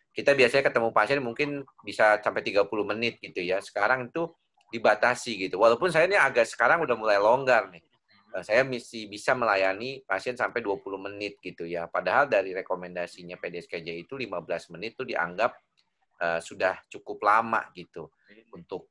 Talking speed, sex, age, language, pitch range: 150 wpm, male, 30-49, Indonesian, 90-115 Hz